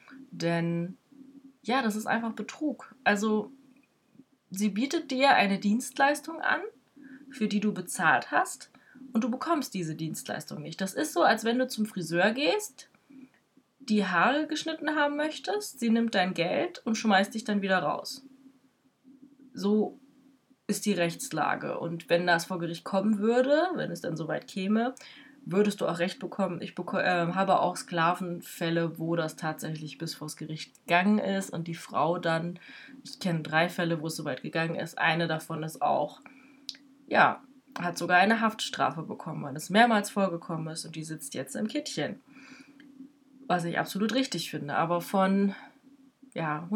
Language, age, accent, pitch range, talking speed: German, 20-39, German, 175-265 Hz, 165 wpm